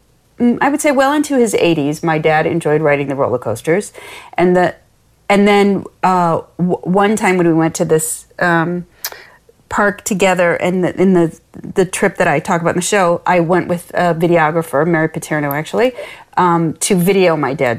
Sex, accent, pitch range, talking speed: female, American, 160-200 Hz, 190 wpm